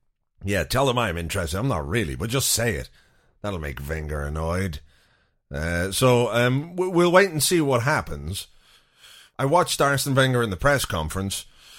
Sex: male